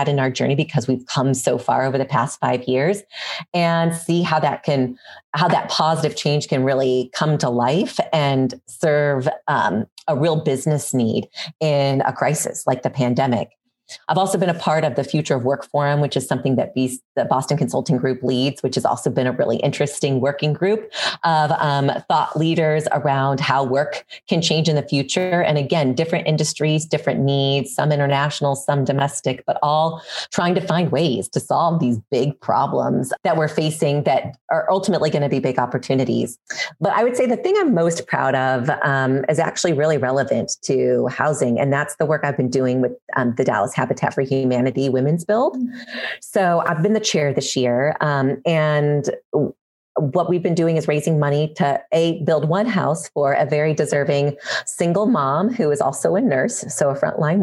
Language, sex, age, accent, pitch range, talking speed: English, female, 30-49, American, 135-165 Hz, 190 wpm